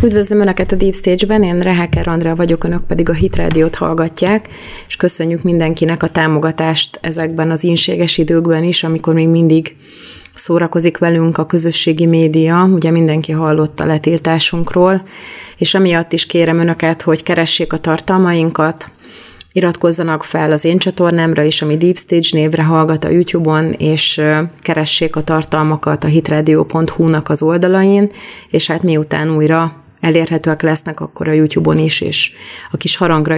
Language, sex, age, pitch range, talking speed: Hungarian, female, 30-49, 155-175 Hz, 145 wpm